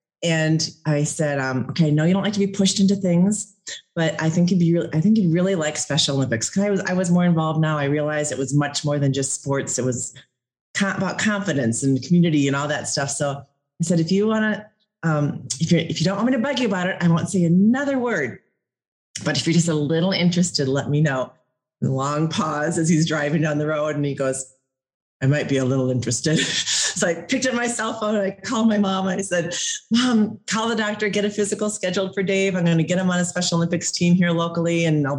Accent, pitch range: American, 150-185 Hz